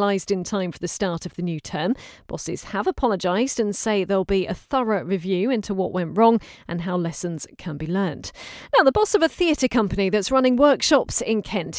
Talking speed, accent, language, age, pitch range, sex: 210 wpm, British, English, 40-59, 195-255 Hz, female